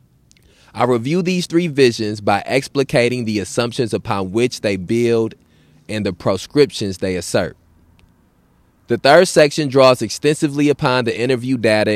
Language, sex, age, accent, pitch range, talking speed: English, male, 20-39, American, 105-135 Hz, 135 wpm